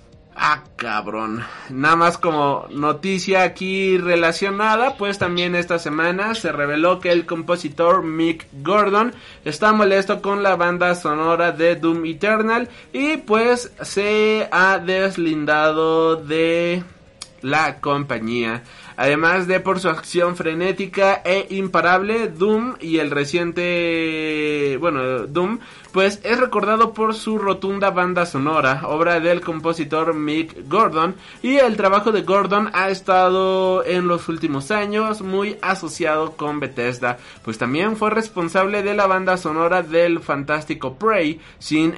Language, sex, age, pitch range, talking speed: Spanish, male, 30-49, 155-195 Hz, 130 wpm